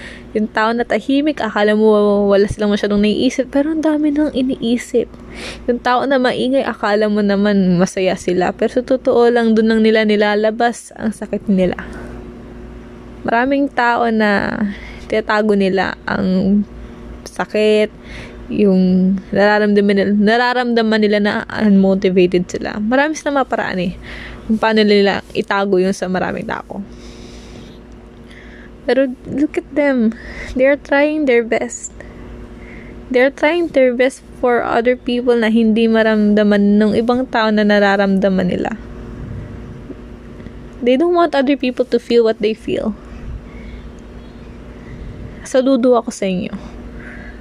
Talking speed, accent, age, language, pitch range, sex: 130 wpm, Filipino, 20-39, English, 200-250 Hz, female